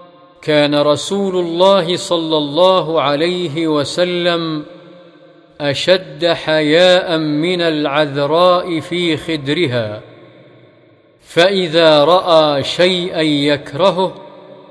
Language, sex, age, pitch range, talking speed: Arabic, male, 50-69, 140-170 Hz, 70 wpm